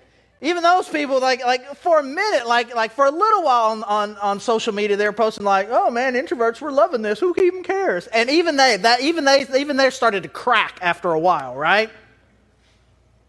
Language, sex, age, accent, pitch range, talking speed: English, male, 30-49, American, 155-240 Hz, 210 wpm